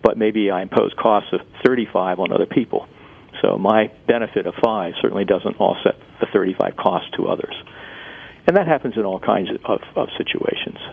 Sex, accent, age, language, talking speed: male, American, 50-69, English, 180 wpm